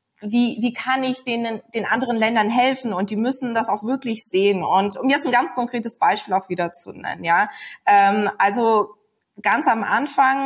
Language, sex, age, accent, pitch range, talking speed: German, female, 20-39, German, 200-245 Hz, 190 wpm